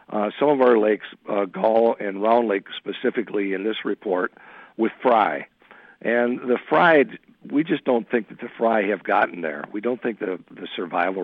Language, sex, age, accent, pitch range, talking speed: English, male, 60-79, American, 105-130 Hz, 185 wpm